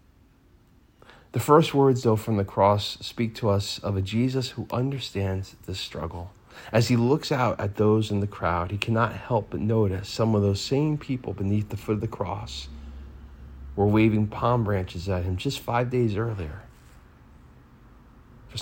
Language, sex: English, male